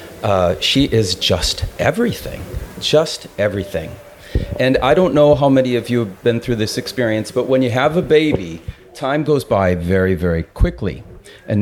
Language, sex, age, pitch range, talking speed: English, male, 40-59, 100-125 Hz, 170 wpm